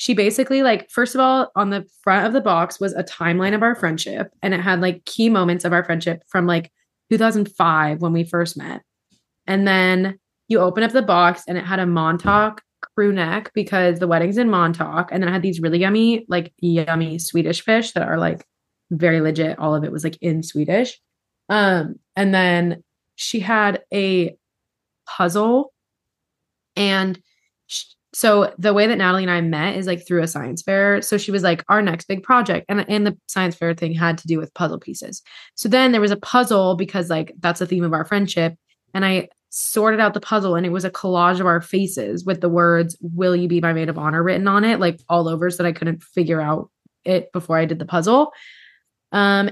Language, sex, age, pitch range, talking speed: English, female, 20-39, 170-210 Hz, 210 wpm